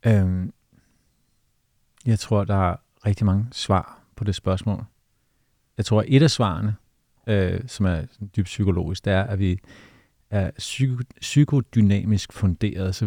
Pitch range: 95-110 Hz